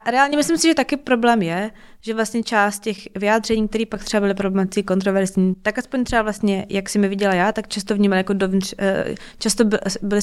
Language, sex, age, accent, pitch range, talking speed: Czech, female, 20-39, native, 190-220 Hz, 205 wpm